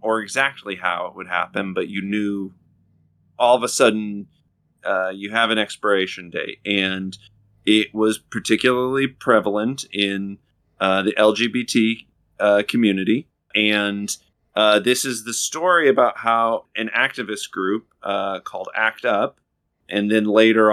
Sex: male